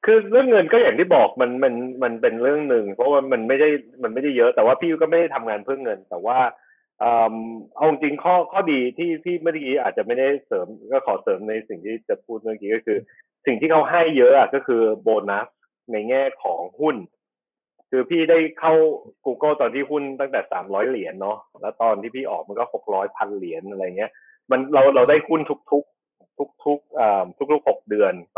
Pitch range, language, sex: 120-170 Hz, Thai, male